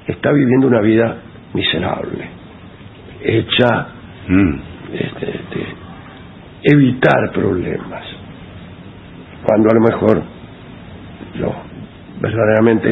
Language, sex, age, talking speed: English, male, 60-79, 75 wpm